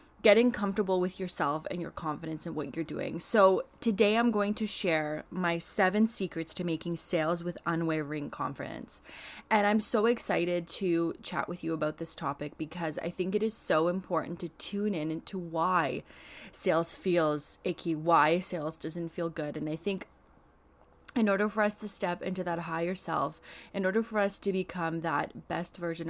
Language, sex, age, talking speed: English, female, 20-39, 180 wpm